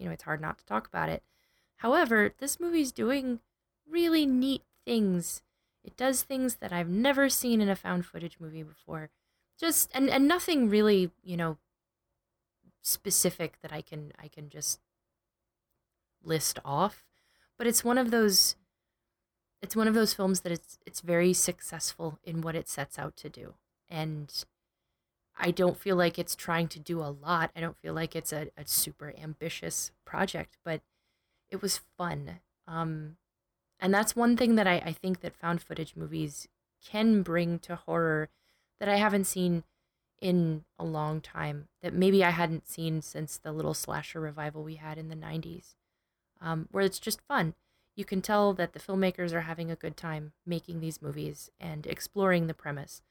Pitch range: 155-195 Hz